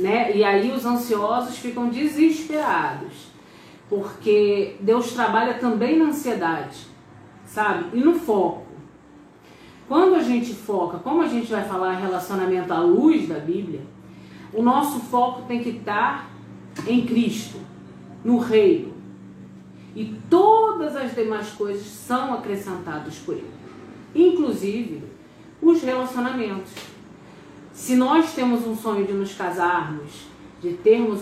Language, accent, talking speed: Portuguese, Brazilian, 120 wpm